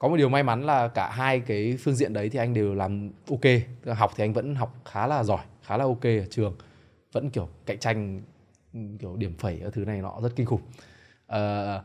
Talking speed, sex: 230 wpm, male